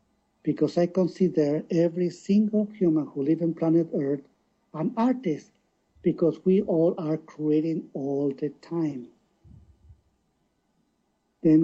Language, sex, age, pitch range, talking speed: Persian, male, 50-69, 160-200 Hz, 115 wpm